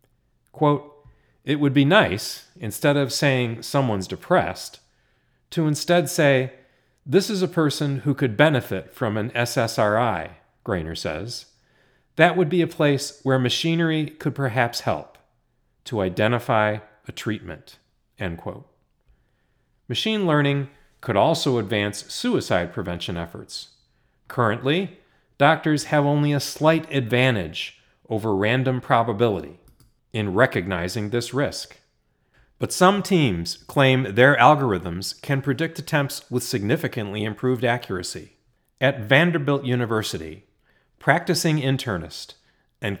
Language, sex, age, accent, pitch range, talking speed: English, male, 40-59, American, 110-145 Hz, 115 wpm